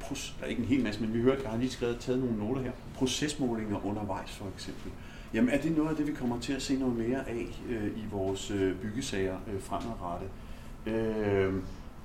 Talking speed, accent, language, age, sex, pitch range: 215 wpm, native, Danish, 40-59, male, 100-130 Hz